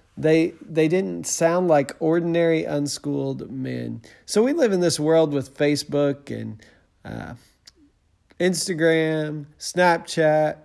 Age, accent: 40-59, American